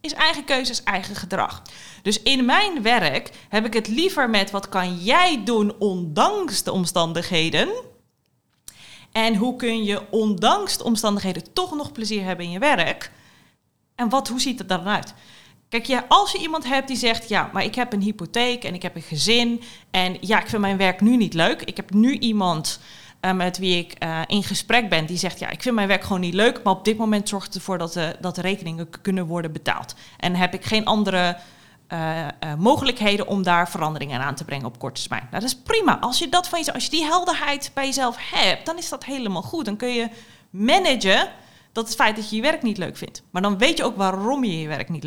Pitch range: 180-245 Hz